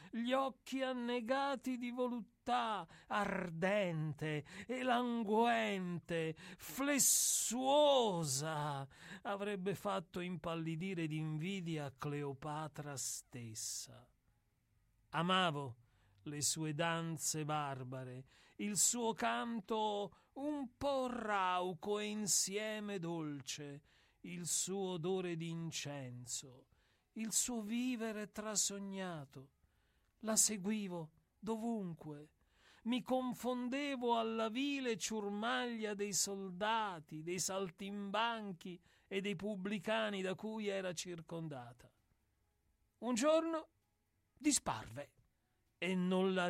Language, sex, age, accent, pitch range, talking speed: Italian, male, 40-59, native, 150-220 Hz, 80 wpm